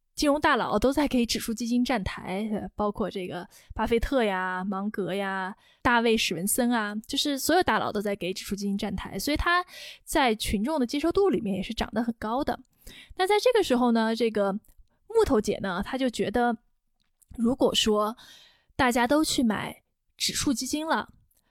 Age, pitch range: 20-39, 210-275 Hz